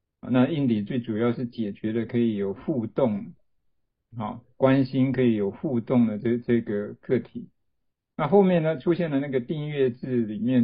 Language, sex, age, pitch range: Chinese, male, 50-69, 115-135 Hz